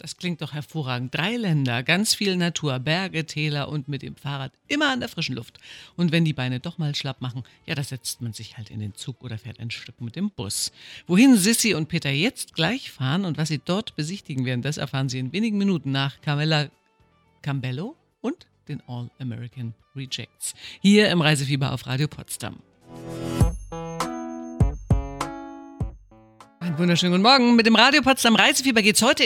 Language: German